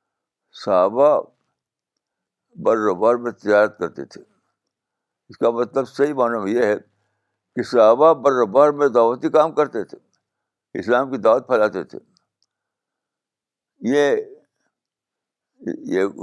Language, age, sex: Urdu, 60-79, male